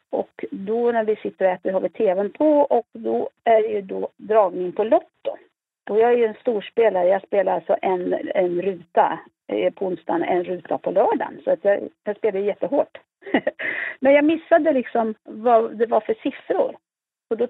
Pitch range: 200-275 Hz